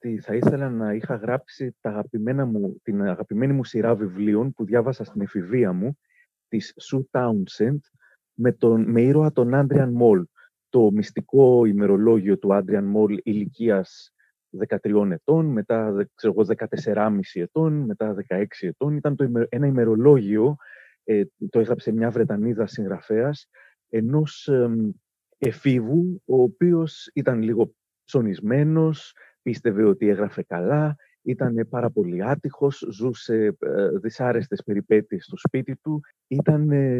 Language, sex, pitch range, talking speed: Greek, male, 110-150 Hz, 125 wpm